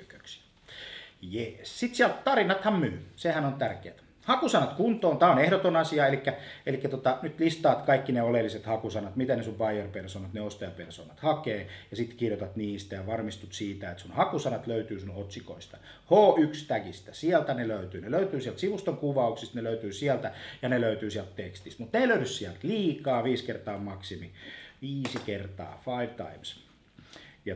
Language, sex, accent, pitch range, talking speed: Finnish, male, native, 100-140 Hz, 155 wpm